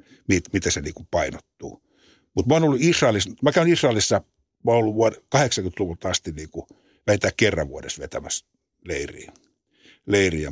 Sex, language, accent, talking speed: male, Finnish, native, 130 wpm